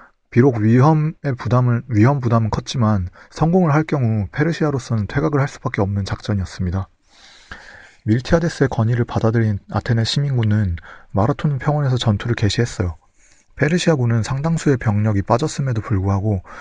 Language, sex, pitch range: Korean, male, 105-140 Hz